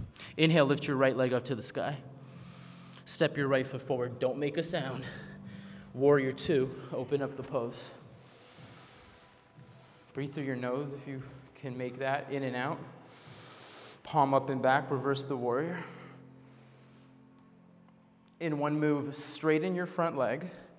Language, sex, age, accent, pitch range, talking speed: English, male, 20-39, American, 125-155 Hz, 145 wpm